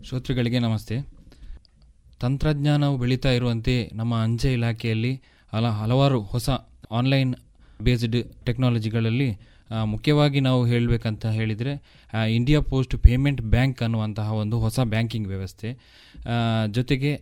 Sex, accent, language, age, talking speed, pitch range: male, native, Kannada, 20-39, 100 wpm, 115-135 Hz